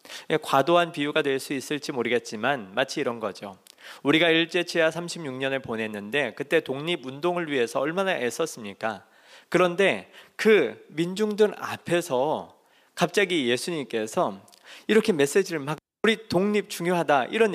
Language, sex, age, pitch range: Korean, male, 40-59, 150-220 Hz